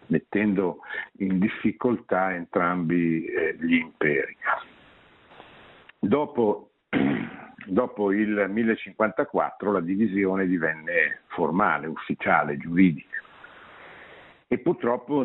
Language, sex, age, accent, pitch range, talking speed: Italian, male, 60-79, native, 90-120 Hz, 70 wpm